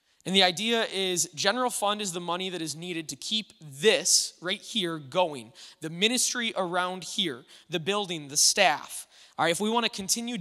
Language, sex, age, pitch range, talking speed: English, male, 20-39, 175-220 Hz, 190 wpm